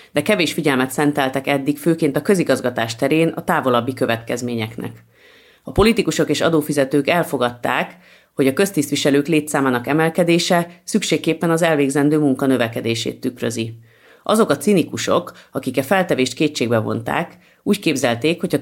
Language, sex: Hungarian, female